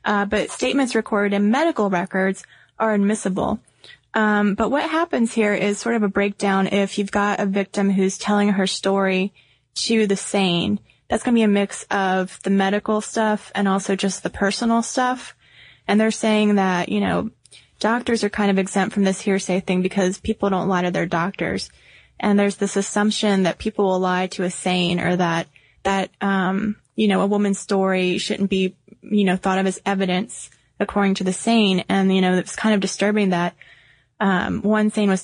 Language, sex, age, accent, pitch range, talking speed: English, female, 20-39, American, 185-210 Hz, 190 wpm